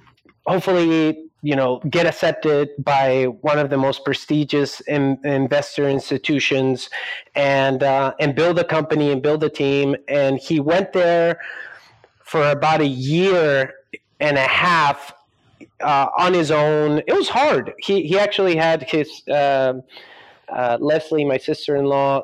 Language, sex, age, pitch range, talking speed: English, male, 30-49, 135-160 Hz, 140 wpm